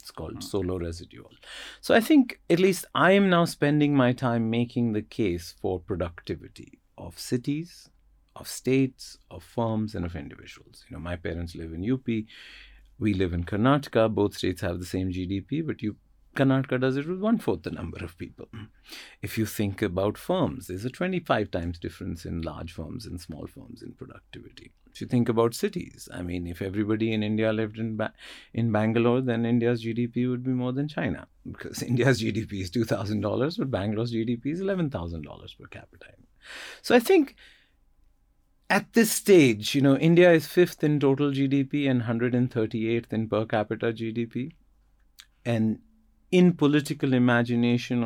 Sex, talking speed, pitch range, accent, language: male, 170 wpm, 100-135 Hz, Indian, English